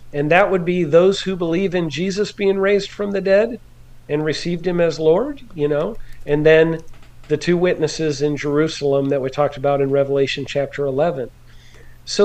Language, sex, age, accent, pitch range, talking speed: English, male, 50-69, American, 140-195 Hz, 180 wpm